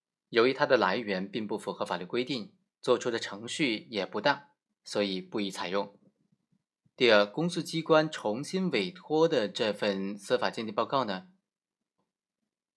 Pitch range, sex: 105-145 Hz, male